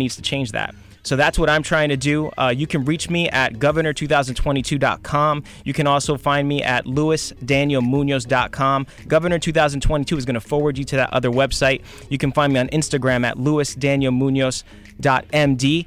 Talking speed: 170 wpm